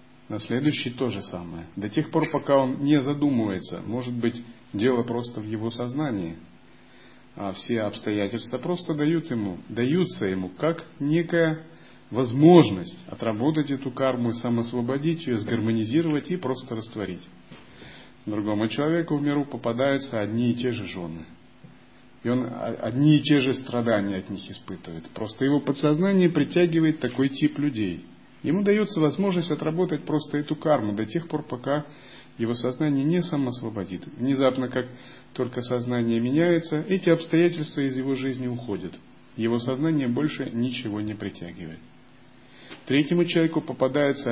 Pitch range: 110-150 Hz